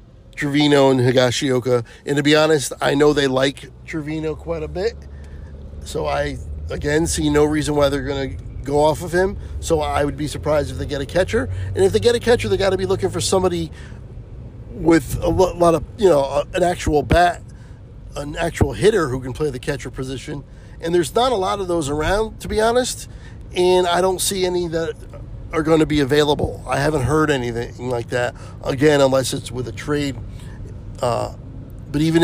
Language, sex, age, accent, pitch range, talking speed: English, male, 50-69, American, 115-185 Hz, 195 wpm